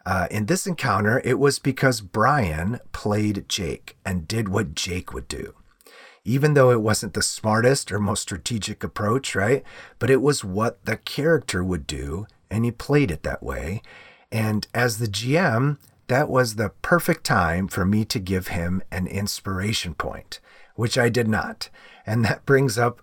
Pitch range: 95-125 Hz